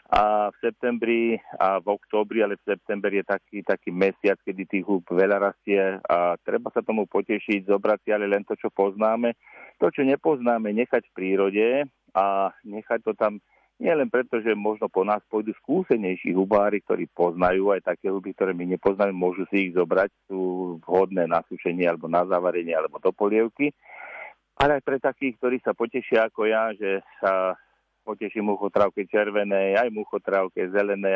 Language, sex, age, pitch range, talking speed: Slovak, male, 50-69, 95-110 Hz, 170 wpm